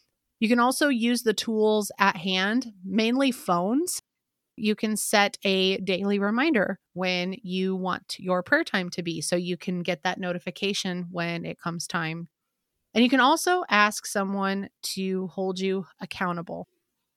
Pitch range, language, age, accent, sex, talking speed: 185-225 Hz, English, 30-49, American, female, 155 wpm